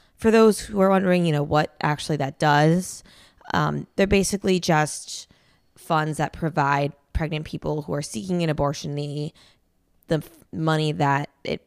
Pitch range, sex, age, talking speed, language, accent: 140-160 Hz, female, 20-39, 155 wpm, English, American